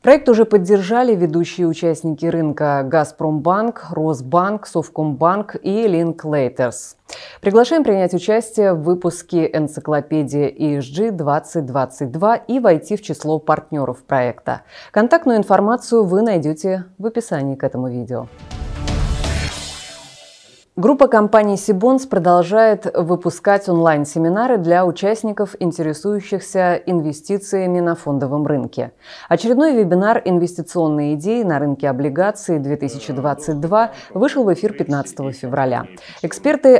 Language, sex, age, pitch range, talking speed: Russian, female, 20-39, 150-210 Hz, 100 wpm